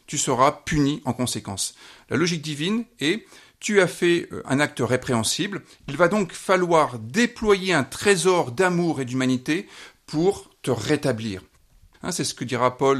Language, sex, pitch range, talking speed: French, male, 120-165 Hz, 165 wpm